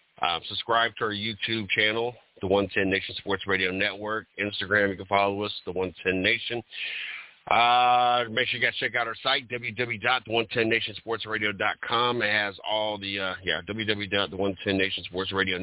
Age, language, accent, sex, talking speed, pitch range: 40-59, English, American, male, 145 wpm, 95-115 Hz